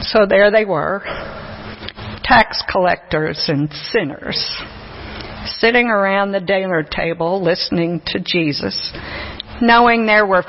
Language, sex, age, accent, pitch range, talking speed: English, female, 50-69, American, 180-245 Hz, 110 wpm